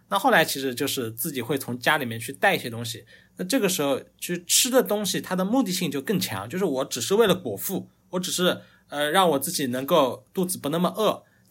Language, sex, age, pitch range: Chinese, male, 20-39, 135-190 Hz